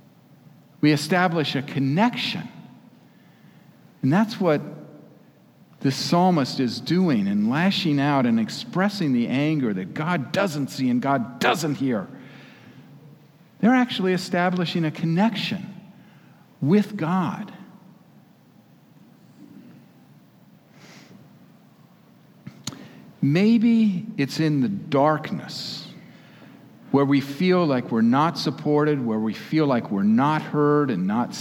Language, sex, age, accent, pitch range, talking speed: English, male, 50-69, American, 135-195 Hz, 100 wpm